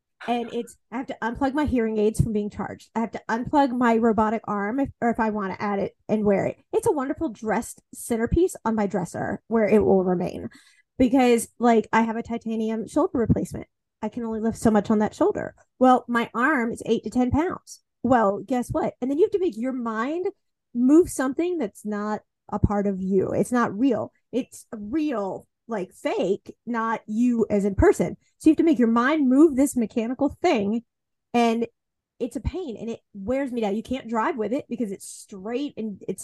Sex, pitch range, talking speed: female, 220-275 Hz, 210 wpm